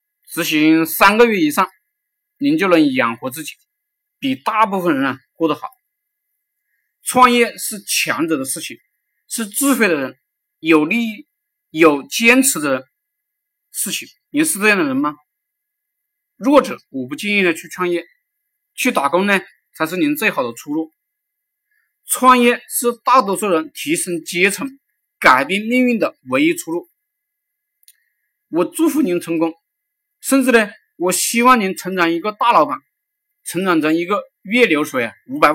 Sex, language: male, Chinese